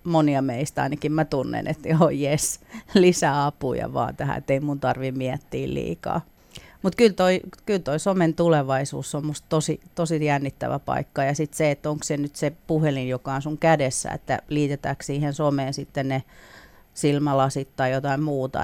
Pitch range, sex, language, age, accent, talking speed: 135-155 Hz, female, Finnish, 40-59, native, 175 wpm